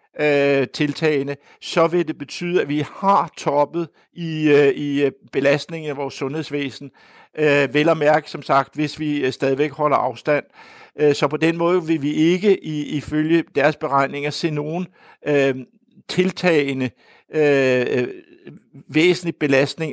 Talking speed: 125 wpm